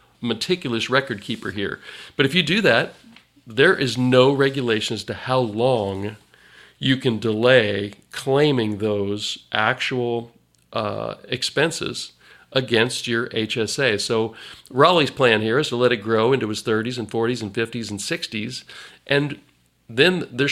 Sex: male